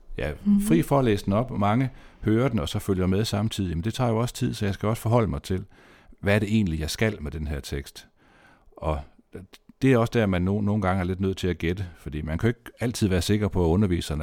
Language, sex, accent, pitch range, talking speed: Danish, male, native, 85-110 Hz, 275 wpm